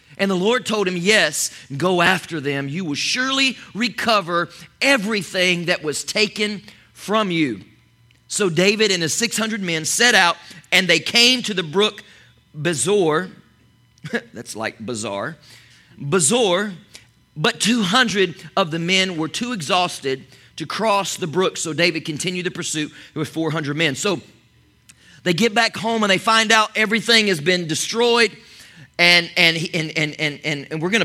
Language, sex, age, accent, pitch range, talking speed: English, male, 40-59, American, 165-215 Hz, 160 wpm